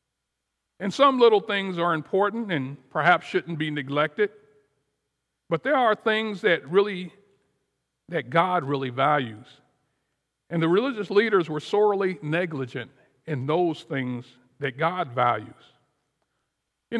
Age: 50-69